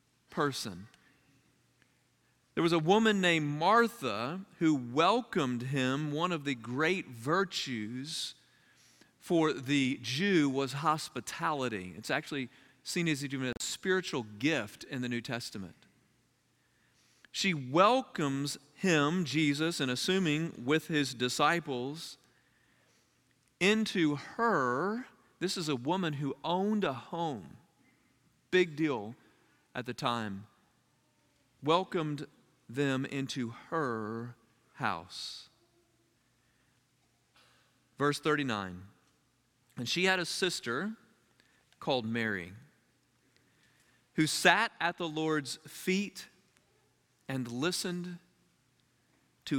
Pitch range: 125-170 Hz